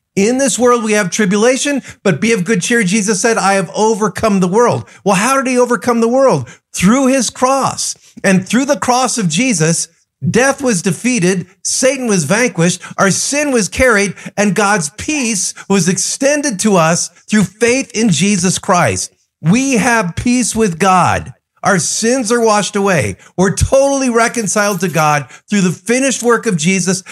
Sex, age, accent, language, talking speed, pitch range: male, 50-69, American, English, 170 wpm, 180-230 Hz